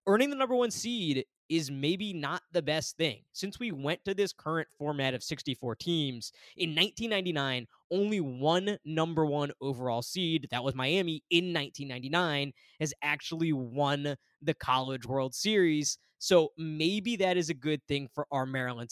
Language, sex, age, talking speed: English, male, 20-39, 160 wpm